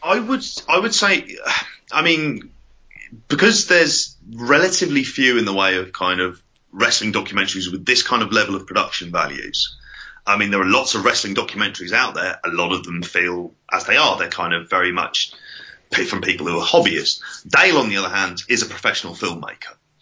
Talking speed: 190 wpm